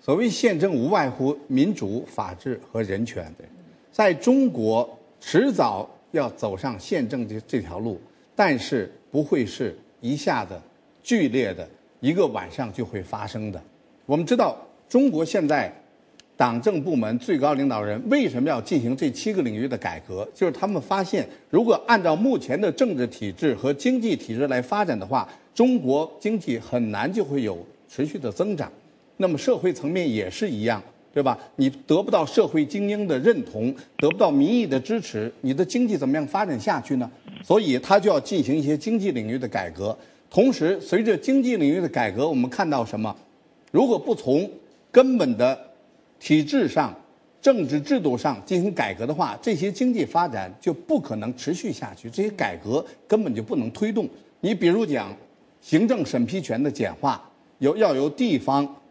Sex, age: male, 50-69